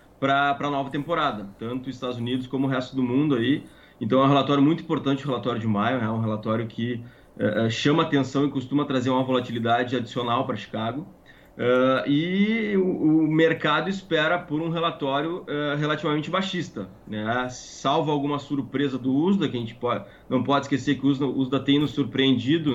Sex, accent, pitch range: male, Brazilian, 125-145 Hz